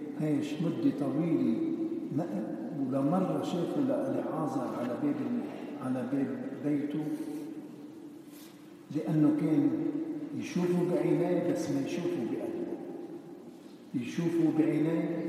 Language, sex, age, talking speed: English, male, 60-79, 80 wpm